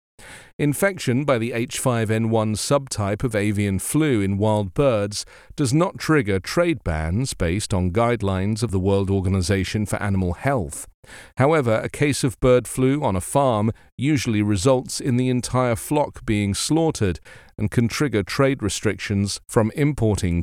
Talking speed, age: 145 wpm, 40-59